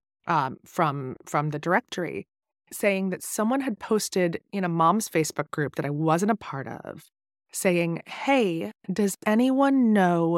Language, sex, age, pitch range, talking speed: English, female, 30-49, 160-200 Hz, 150 wpm